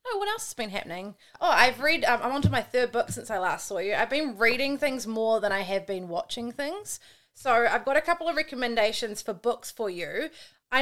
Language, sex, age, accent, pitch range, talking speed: English, female, 30-49, Australian, 210-270 Hz, 240 wpm